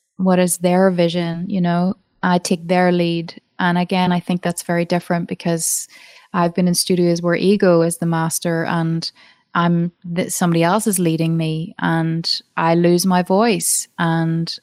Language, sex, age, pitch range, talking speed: English, female, 20-39, 175-205 Hz, 165 wpm